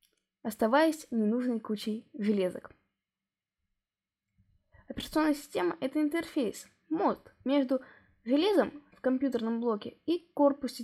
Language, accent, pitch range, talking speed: Russian, native, 205-280 Hz, 95 wpm